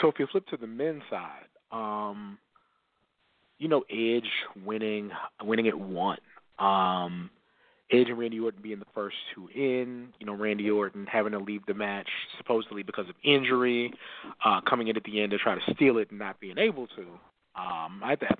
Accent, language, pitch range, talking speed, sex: American, English, 105-135 Hz, 190 wpm, male